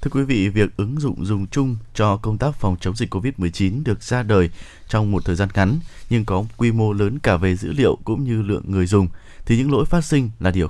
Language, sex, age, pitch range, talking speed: Vietnamese, male, 20-39, 95-130 Hz, 245 wpm